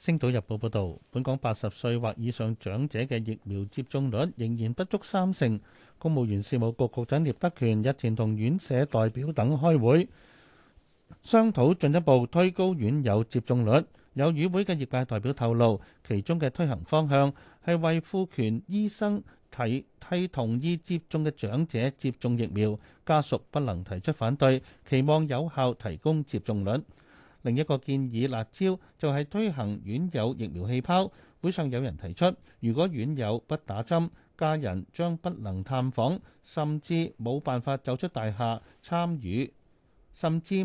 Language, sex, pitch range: Chinese, male, 115-160 Hz